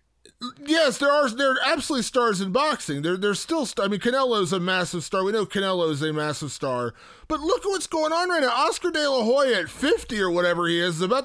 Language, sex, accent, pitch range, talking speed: English, male, American, 180-255 Hz, 250 wpm